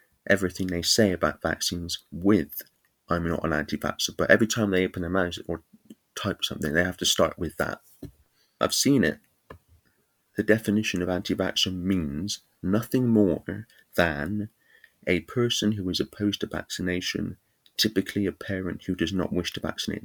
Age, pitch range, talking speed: 30-49, 85-105 Hz, 160 wpm